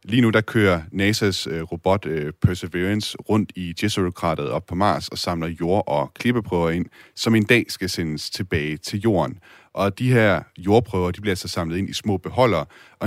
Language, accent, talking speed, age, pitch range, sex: Danish, native, 200 wpm, 30-49, 85-110 Hz, male